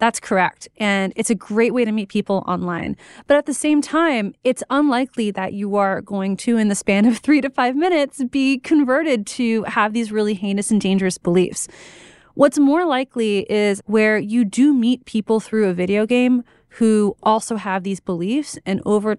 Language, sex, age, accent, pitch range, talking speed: English, female, 30-49, American, 190-235 Hz, 190 wpm